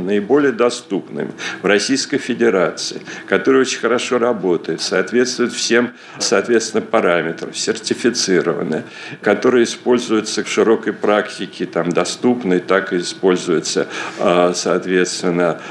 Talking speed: 95 wpm